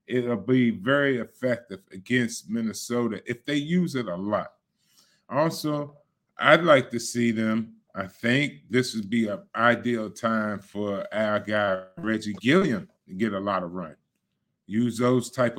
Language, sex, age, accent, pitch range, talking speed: English, male, 30-49, American, 110-140 Hz, 155 wpm